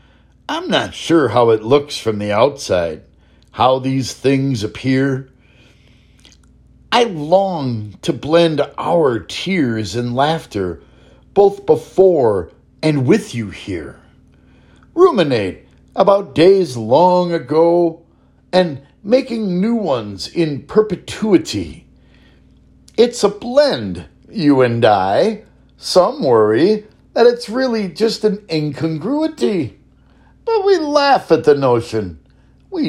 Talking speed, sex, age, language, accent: 110 wpm, male, 60-79, English, American